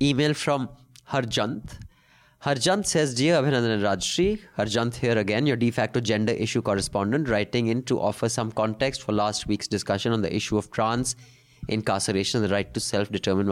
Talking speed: 170 wpm